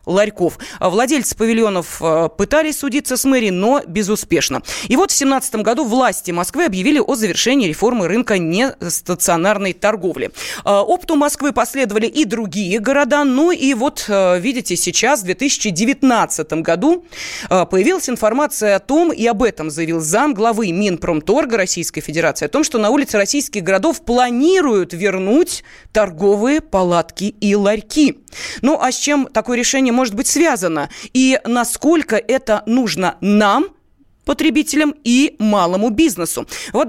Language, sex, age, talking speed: Russian, female, 20-39, 135 wpm